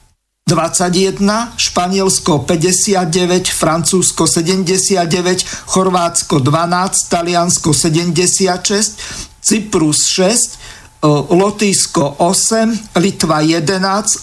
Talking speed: 65 wpm